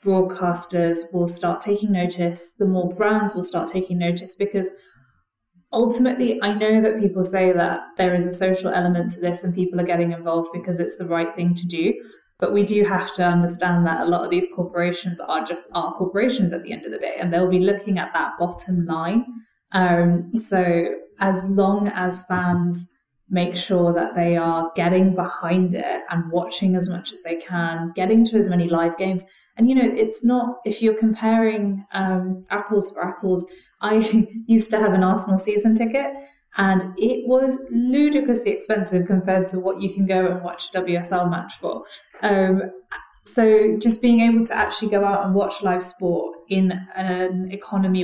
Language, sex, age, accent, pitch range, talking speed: English, female, 20-39, British, 175-205 Hz, 185 wpm